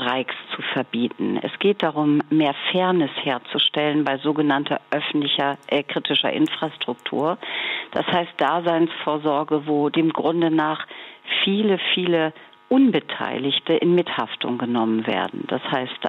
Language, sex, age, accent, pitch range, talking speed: German, female, 50-69, German, 140-165 Hz, 110 wpm